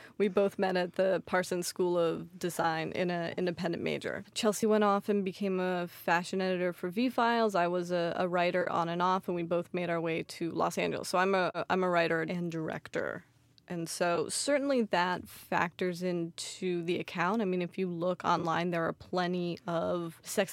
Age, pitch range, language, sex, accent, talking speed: 20-39, 175-195 Hz, English, female, American, 195 wpm